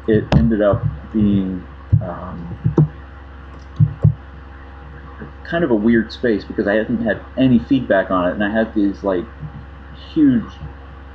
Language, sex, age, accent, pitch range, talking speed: English, male, 30-49, American, 70-105 Hz, 130 wpm